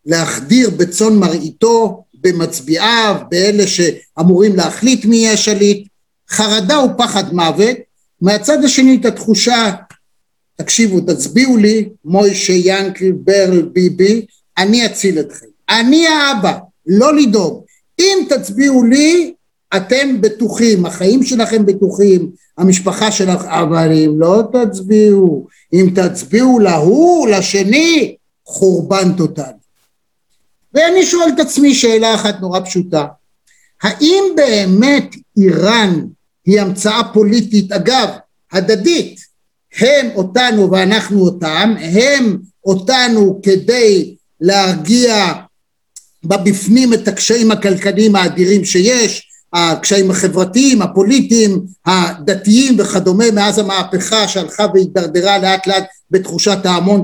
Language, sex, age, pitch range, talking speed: Hebrew, male, 50-69, 185-225 Hz, 100 wpm